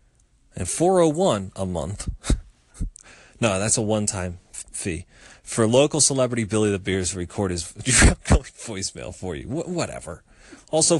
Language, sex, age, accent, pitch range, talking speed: English, male, 30-49, American, 95-130 Hz, 125 wpm